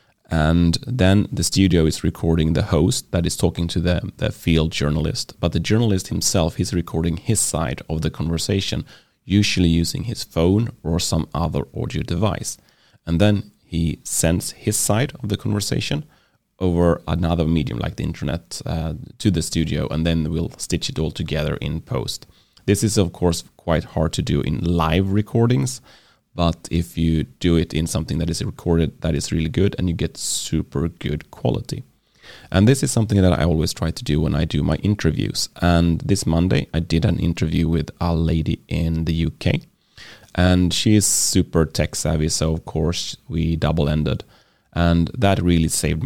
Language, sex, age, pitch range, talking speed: English, male, 30-49, 80-95 Hz, 180 wpm